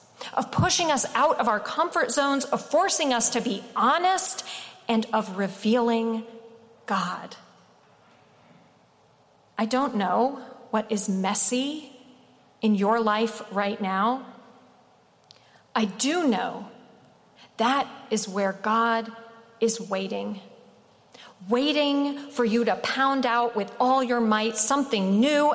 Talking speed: 115 wpm